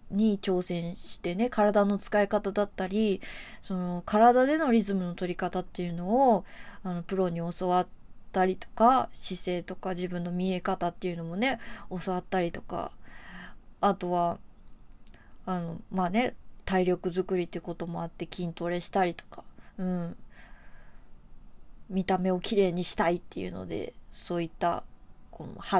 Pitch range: 175-205 Hz